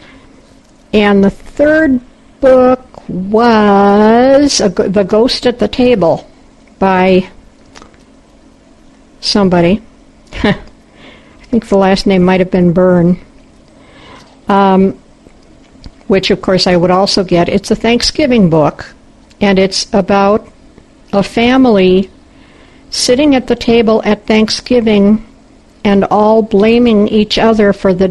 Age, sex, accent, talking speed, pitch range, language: 60-79, female, American, 110 wpm, 190-245 Hz, English